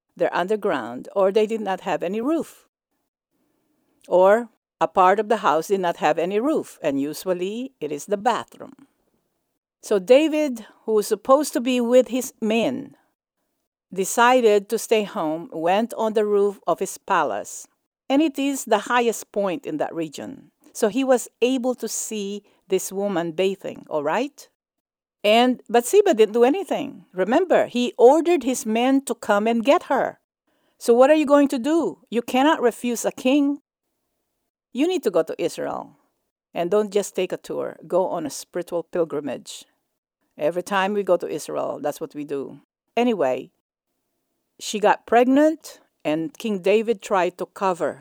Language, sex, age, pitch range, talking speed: English, female, 50-69, 190-265 Hz, 165 wpm